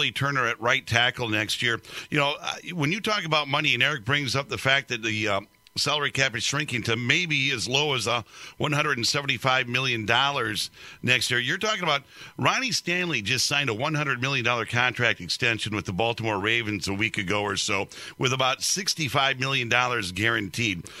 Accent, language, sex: American, English, male